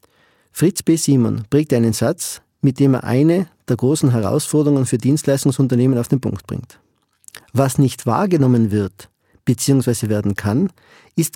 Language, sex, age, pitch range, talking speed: German, male, 50-69, 120-150 Hz, 145 wpm